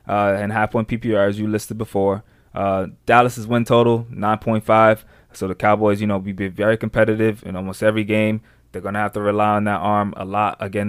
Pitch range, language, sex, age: 100-110 Hz, English, male, 20-39